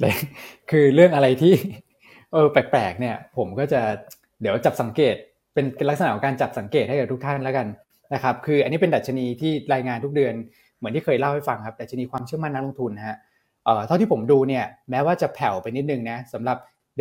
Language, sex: Thai, male